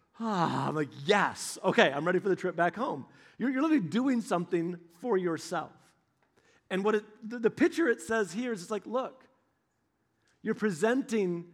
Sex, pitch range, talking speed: male, 160-215 Hz, 175 wpm